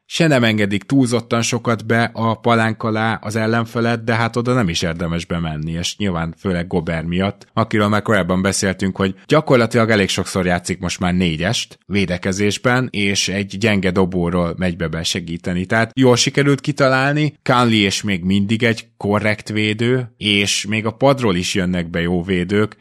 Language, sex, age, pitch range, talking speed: Hungarian, male, 20-39, 90-115 Hz, 165 wpm